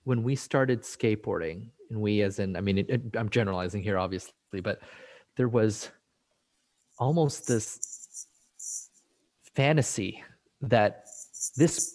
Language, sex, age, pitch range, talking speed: English, male, 30-49, 105-130 Hz, 110 wpm